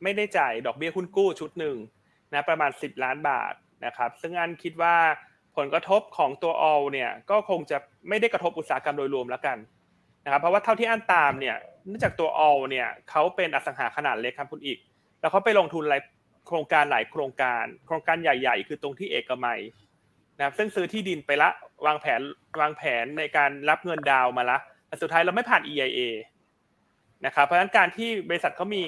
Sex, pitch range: male, 145-185 Hz